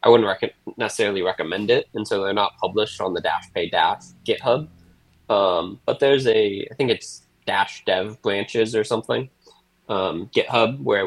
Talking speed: 175 wpm